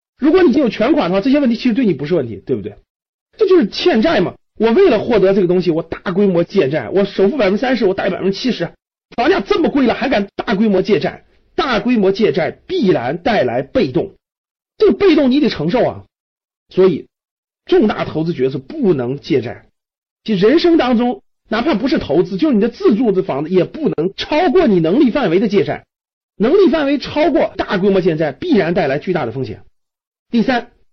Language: Chinese